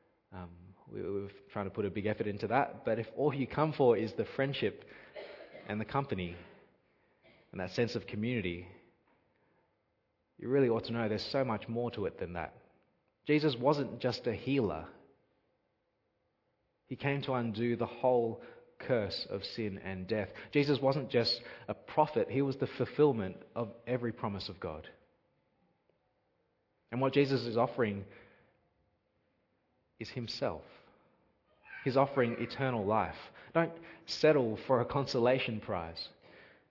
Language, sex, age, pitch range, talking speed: English, male, 20-39, 105-135 Hz, 140 wpm